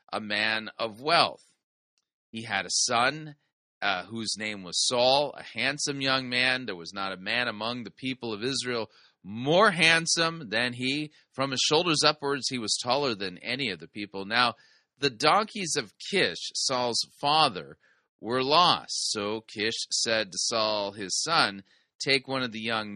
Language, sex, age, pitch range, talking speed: English, male, 30-49, 110-145 Hz, 165 wpm